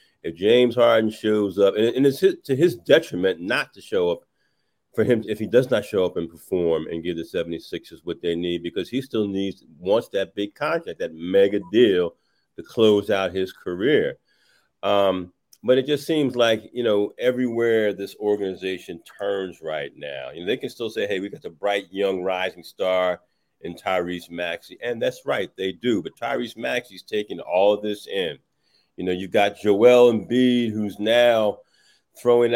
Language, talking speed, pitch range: English, 185 wpm, 95-115 Hz